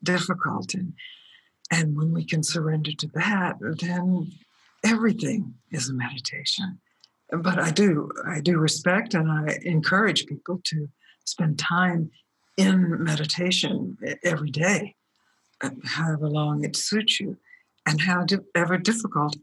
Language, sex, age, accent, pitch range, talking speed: English, female, 60-79, American, 155-185 Hz, 125 wpm